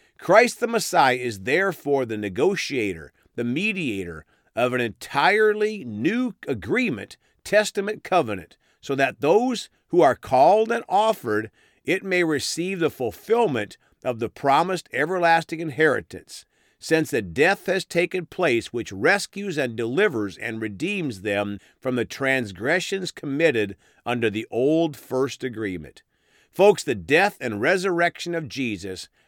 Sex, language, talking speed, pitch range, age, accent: male, English, 130 wpm, 115-180 Hz, 50-69, American